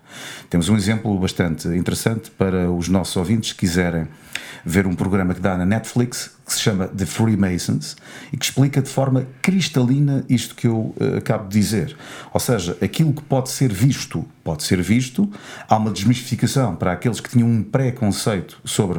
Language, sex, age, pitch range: Portuguese, male, 40-59, 95-130 Hz